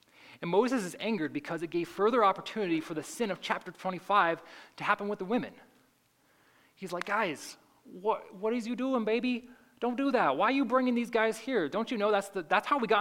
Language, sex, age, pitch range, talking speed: English, male, 20-39, 150-235 Hz, 215 wpm